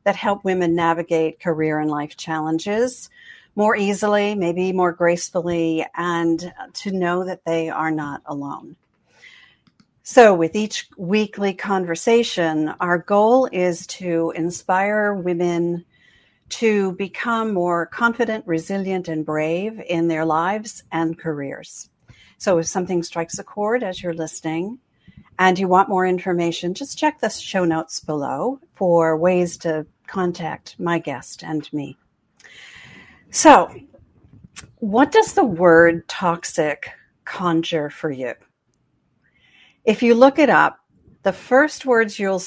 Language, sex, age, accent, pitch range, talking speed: English, female, 50-69, American, 165-210 Hz, 125 wpm